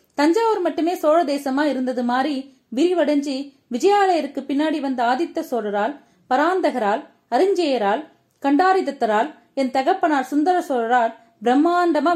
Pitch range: 255-325 Hz